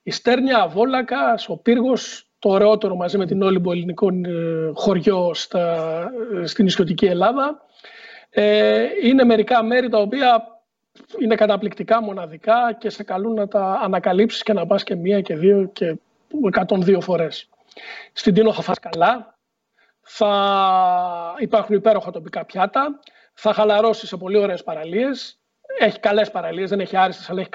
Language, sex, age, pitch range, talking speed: Greek, male, 40-59, 185-225 Hz, 145 wpm